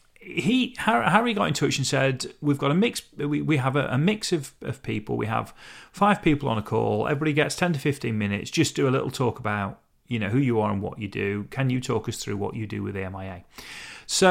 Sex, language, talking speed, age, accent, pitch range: male, English, 250 wpm, 40-59, British, 115-165 Hz